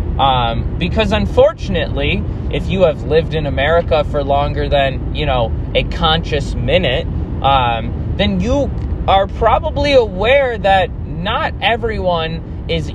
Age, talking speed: 20-39, 125 wpm